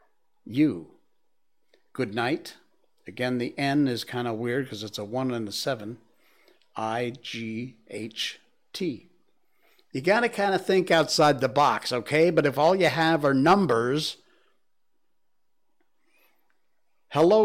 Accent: American